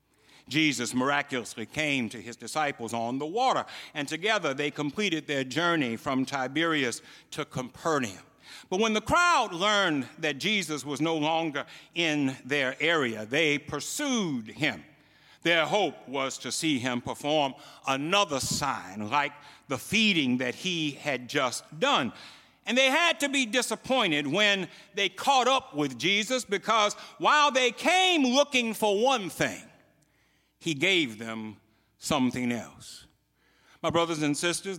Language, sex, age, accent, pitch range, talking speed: English, male, 60-79, American, 140-205 Hz, 140 wpm